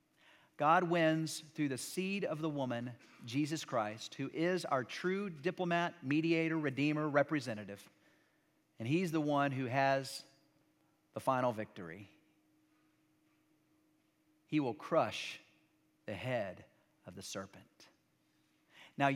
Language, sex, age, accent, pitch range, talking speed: English, male, 50-69, American, 120-160 Hz, 115 wpm